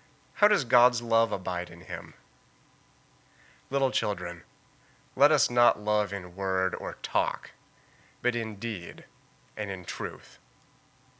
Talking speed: 125 wpm